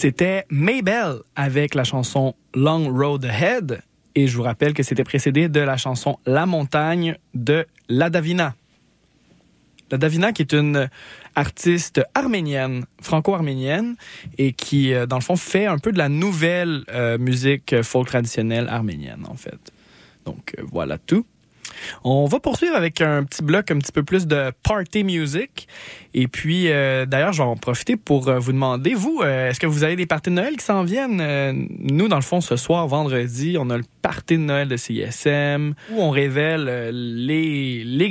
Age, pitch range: 20-39, 130-165 Hz